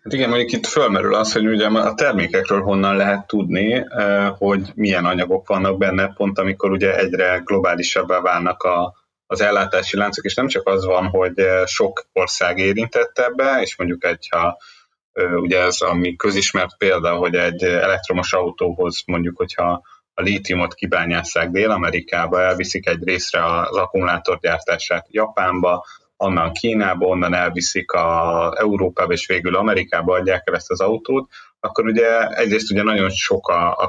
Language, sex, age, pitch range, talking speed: Hungarian, male, 30-49, 90-110 Hz, 150 wpm